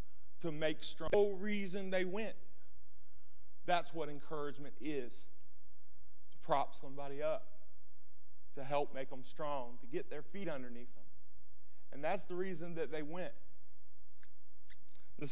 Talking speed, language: 135 wpm, English